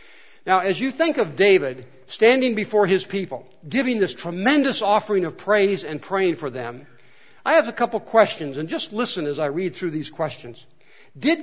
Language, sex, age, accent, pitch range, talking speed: English, male, 60-79, American, 180-270 Hz, 190 wpm